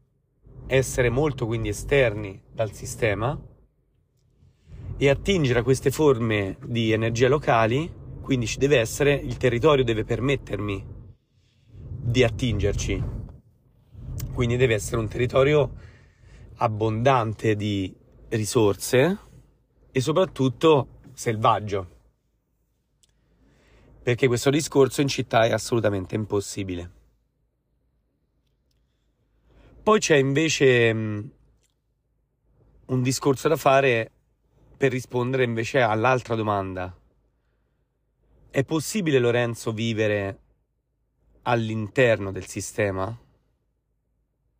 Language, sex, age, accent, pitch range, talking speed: Italian, male, 30-49, native, 110-135 Hz, 85 wpm